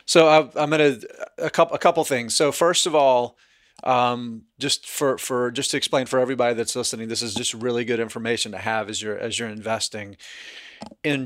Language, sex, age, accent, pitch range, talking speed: English, male, 30-49, American, 120-145 Hz, 190 wpm